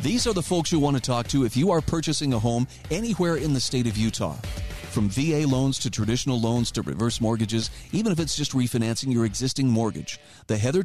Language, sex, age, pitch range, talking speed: English, male, 40-59, 115-160 Hz, 220 wpm